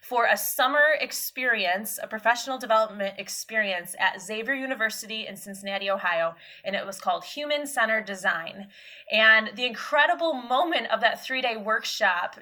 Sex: female